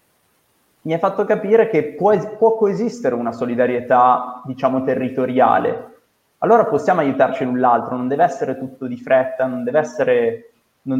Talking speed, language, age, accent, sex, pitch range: 145 wpm, Italian, 20-39, native, male, 130-165 Hz